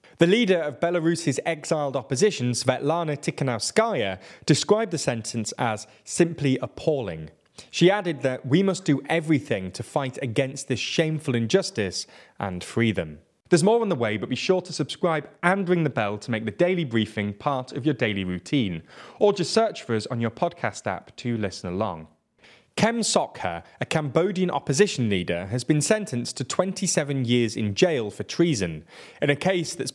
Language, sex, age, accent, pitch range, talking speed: English, male, 30-49, British, 110-170 Hz, 170 wpm